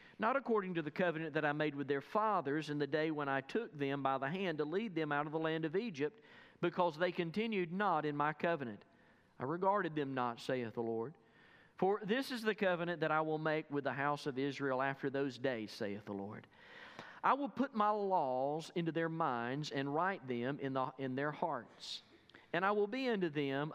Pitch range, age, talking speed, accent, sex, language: 135-185 Hz, 40-59, 215 wpm, American, male, English